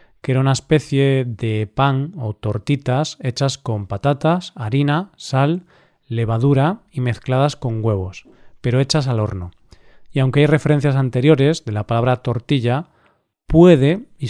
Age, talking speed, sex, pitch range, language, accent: 40-59, 140 wpm, male, 120-150 Hz, Spanish, Spanish